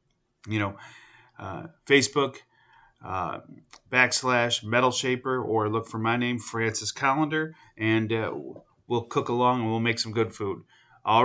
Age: 30-49